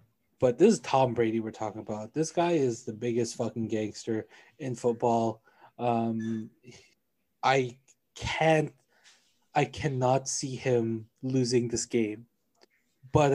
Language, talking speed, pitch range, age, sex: English, 125 wpm, 120-150 Hz, 20-39, male